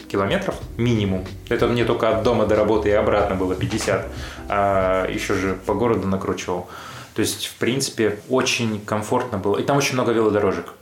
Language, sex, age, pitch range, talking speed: Russian, male, 20-39, 100-115 Hz, 170 wpm